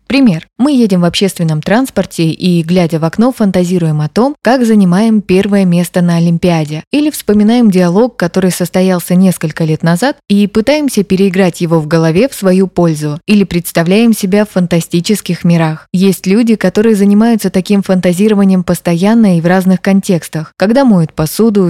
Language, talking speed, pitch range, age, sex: Russian, 155 wpm, 170-210 Hz, 20-39, female